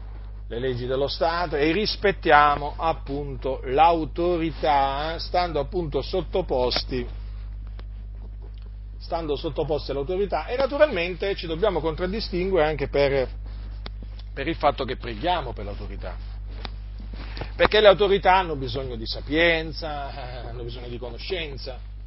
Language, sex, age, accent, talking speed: Italian, male, 40-59, native, 110 wpm